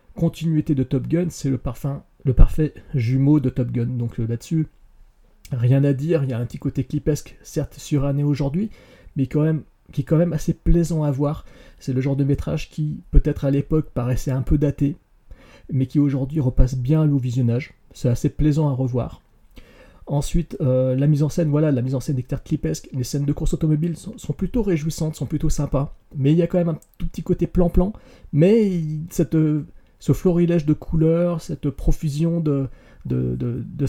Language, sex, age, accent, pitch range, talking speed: French, male, 40-59, French, 135-160 Hz, 200 wpm